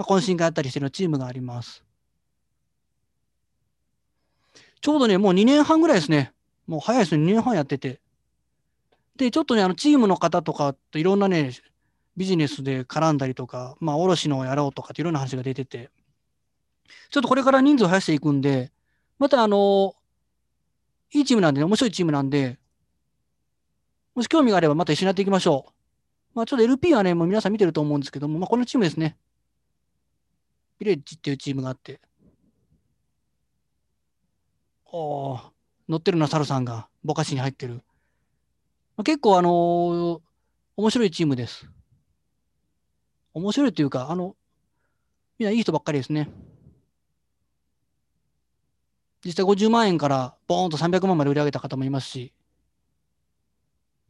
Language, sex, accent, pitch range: Japanese, male, native, 140-195 Hz